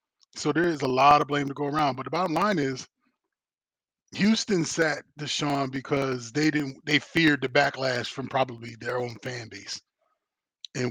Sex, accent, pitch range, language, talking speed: male, American, 125-150 Hz, English, 175 wpm